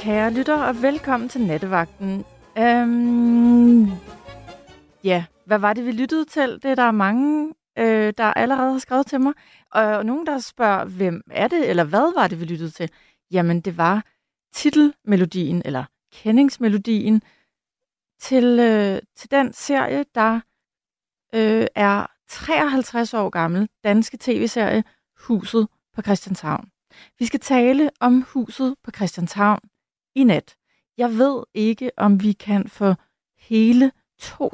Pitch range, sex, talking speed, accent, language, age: 190-240 Hz, female, 130 wpm, native, Danish, 30-49